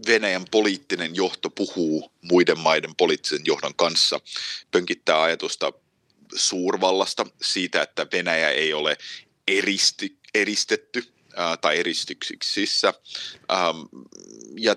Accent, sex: native, male